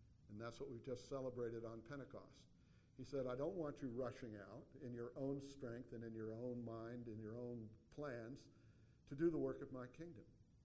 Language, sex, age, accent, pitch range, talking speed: English, male, 50-69, American, 115-135 Hz, 205 wpm